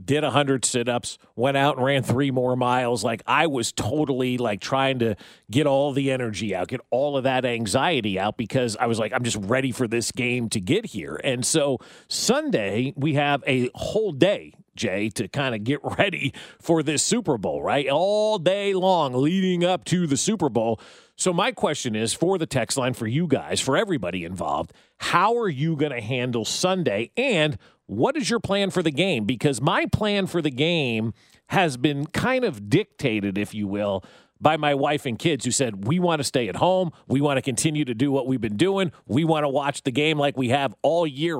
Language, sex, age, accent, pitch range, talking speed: English, male, 40-59, American, 125-175 Hz, 210 wpm